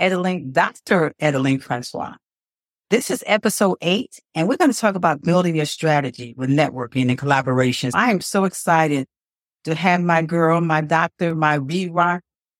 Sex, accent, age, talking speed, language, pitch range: female, American, 50-69, 155 wpm, English, 145-195 Hz